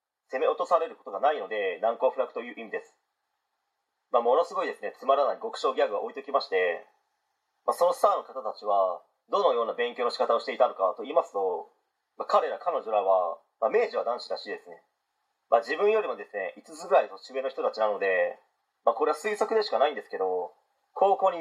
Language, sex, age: Japanese, male, 40-59